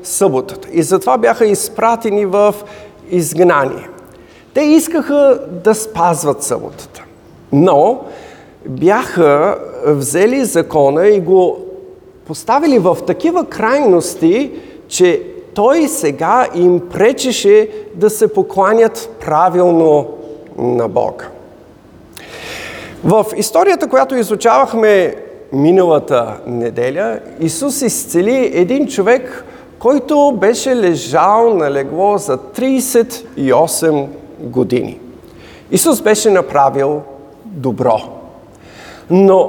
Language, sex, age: Bulgarian, male, 50-69